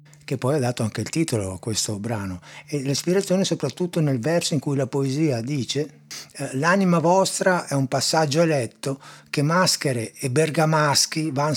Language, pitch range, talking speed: Italian, 120-160 Hz, 160 wpm